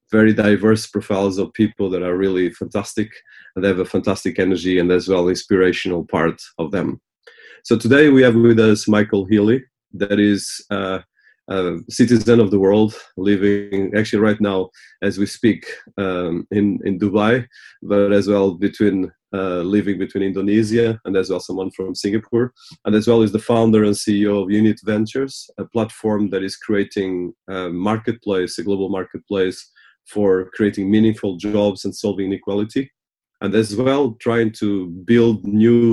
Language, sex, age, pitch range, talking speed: English, male, 30-49, 95-110 Hz, 165 wpm